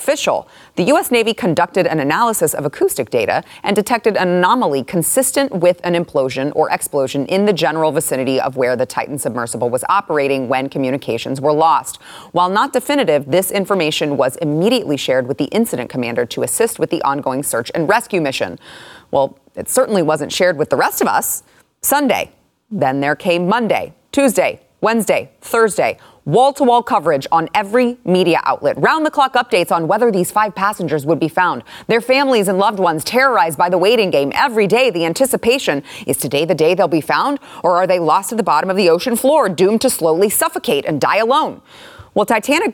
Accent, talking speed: American, 185 wpm